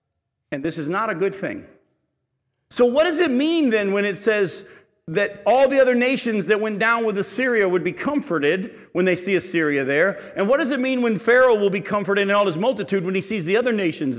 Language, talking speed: English, 230 wpm